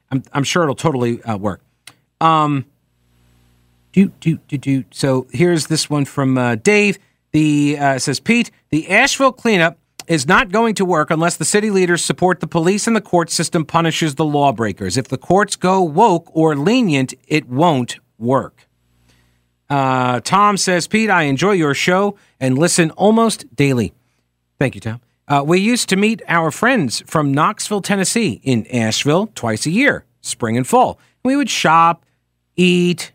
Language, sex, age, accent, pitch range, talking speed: English, male, 40-59, American, 130-185 Hz, 165 wpm